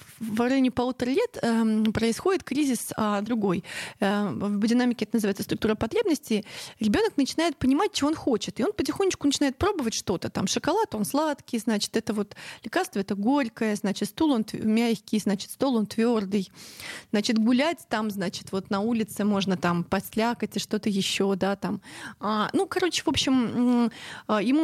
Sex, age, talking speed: female, 20-39, 165 wpm